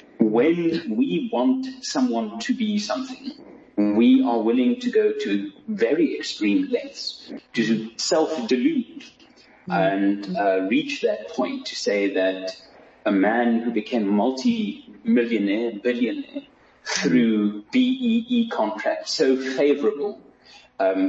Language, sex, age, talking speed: English, male, 30-49, 110 wpm